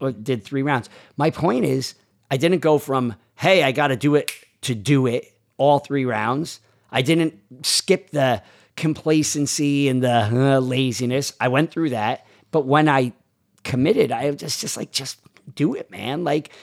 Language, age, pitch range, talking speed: English, 40-59, 115-140 Hz, 180 wpm